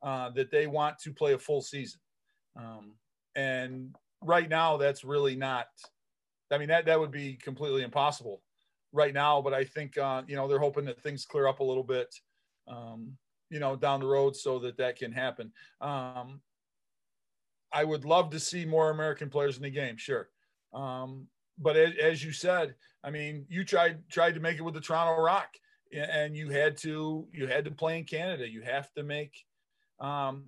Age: 40-59